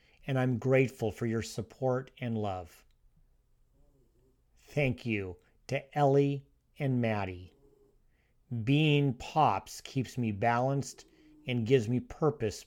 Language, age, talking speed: English, 50-69, 110 wpm